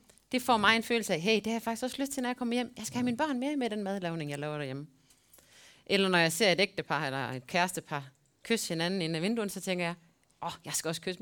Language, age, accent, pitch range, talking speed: Danish, 30-49, native, 155-240 Hz, 290 wpm